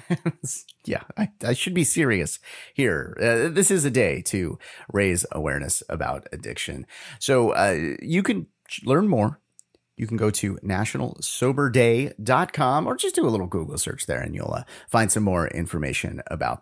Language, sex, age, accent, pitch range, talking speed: English, male, 30-49, American, 95-145 Hz, 160 wpm